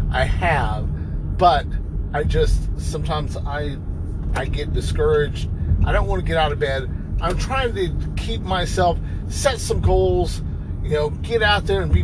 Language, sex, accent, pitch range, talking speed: English, male, American, 80-95 Hz, 165 wpm